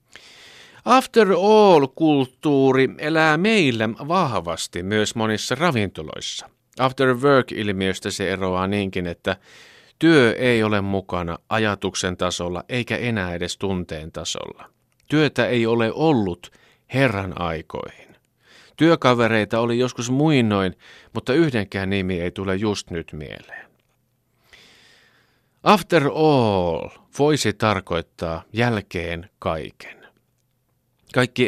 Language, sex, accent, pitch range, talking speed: Finnish, male, native, 90-125 Hz, 95 wpm